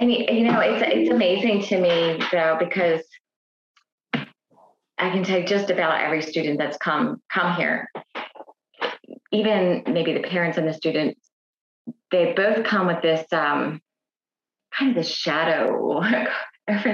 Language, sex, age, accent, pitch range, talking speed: English, female, 30-49, American, 165-215 Hz, 145 wpm